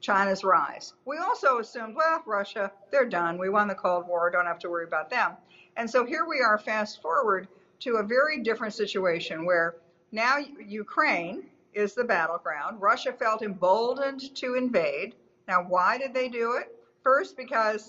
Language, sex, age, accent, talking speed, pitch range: English, female, 50-69, American, 170 wpm, 185-250 Hz